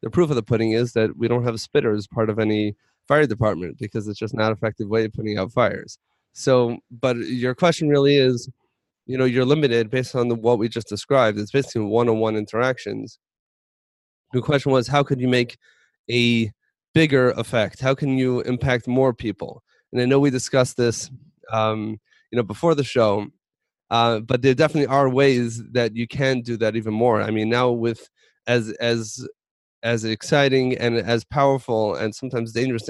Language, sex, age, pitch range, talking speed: English, male, 30-49, 110-130 Hz, 190 wpm